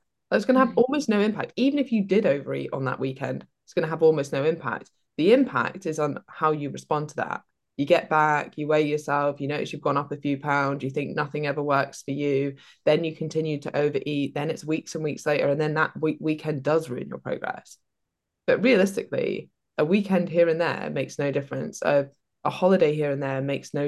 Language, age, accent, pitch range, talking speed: English, 20-39, British, 140-180 Hz, 225 wpm